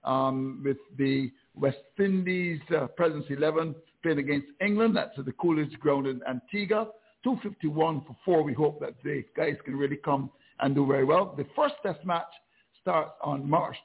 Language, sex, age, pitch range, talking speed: English, male, 60-79, 135-165 Hz, 175 wpm